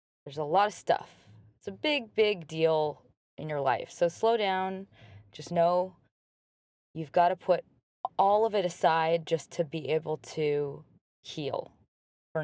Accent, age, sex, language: American, 20-39, female, English